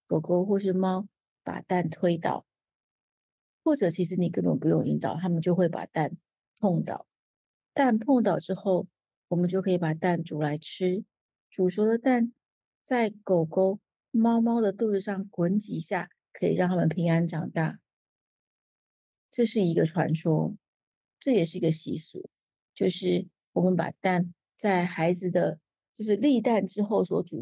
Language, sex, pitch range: Chinese, female, 170-200 Hz